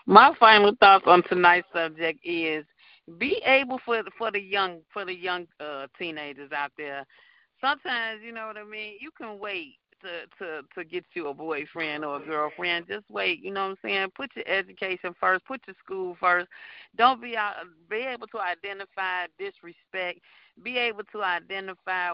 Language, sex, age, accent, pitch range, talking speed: English, female, 40-59, American, 155-215 Hz, 175 wpm